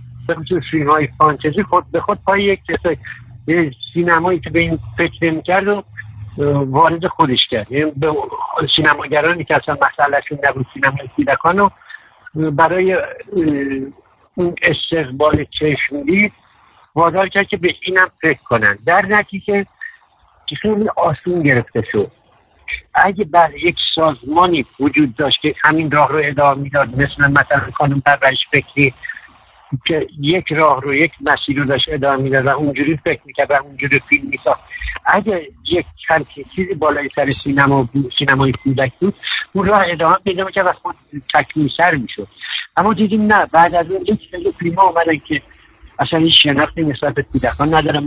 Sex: male